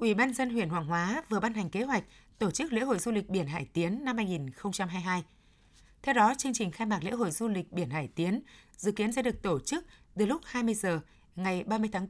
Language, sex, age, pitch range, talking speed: Vietnamese, female, 20-39, 180-230 Hz, 240 wpm